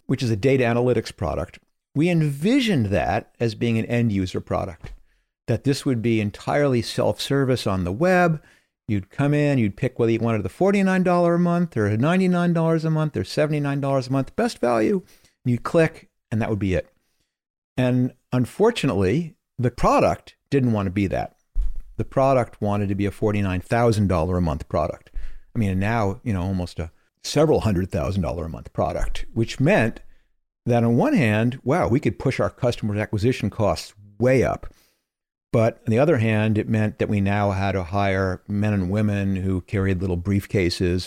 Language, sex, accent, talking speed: English, male, American, 180 wpm